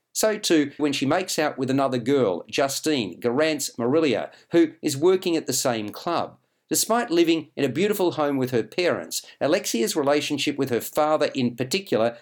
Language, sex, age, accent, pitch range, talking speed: English, male, 50-69, Australian, 130-175 Hz, 170 wpm